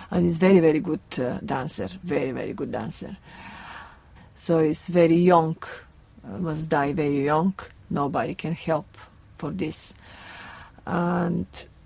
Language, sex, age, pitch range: English, female, 30-49, 155-185 Hz